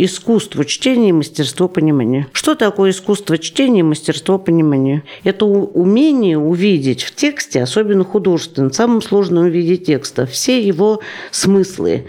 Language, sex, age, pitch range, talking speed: Russian, female, 50-69, 155-200 Hz, 120 wpm